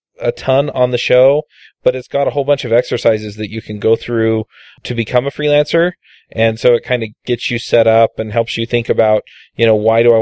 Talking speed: 240 wpm